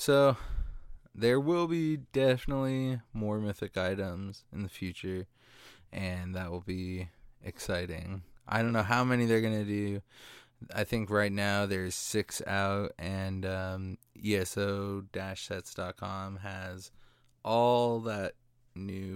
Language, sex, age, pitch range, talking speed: English, male, 20-39, 95-120 Hz, 120 wpm